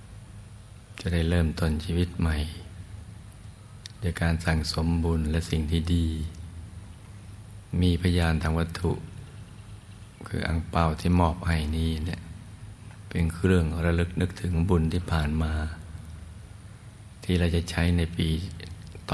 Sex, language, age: male, Thai, 60-79